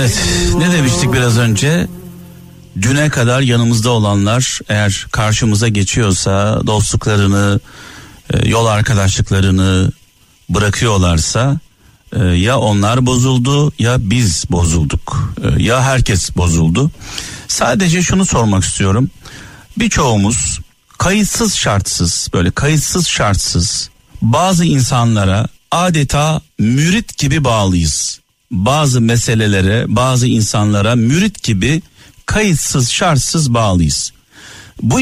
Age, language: 60-79, Turkish